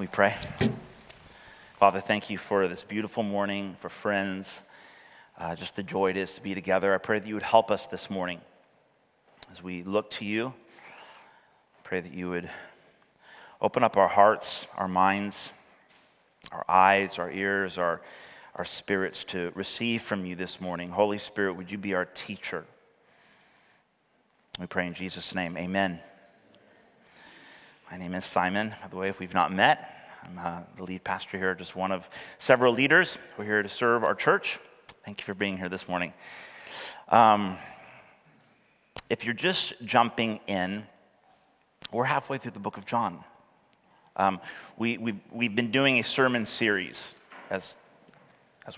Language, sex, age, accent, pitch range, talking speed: English, male, 30-49, American, 95-110 Hz, 160 wpm